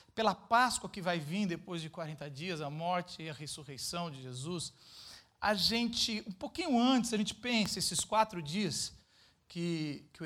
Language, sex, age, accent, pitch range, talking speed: Portuguese, male, 40-59, Brazilian, 160-235 Hz, 175 wpm